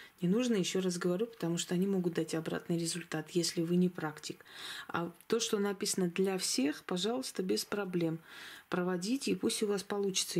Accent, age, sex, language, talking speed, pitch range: native, 30-49, female, Russian, 180 wpm, 170-205 Hz